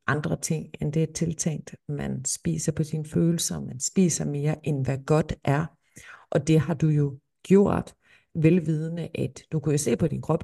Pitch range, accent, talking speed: 145-175 Hz, native, 190 wpm